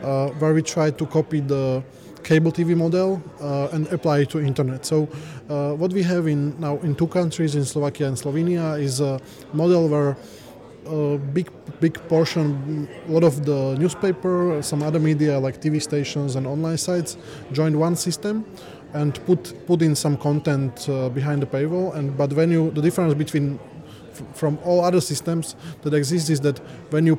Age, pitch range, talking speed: 20-39, 145-165 Hz, 180 wpm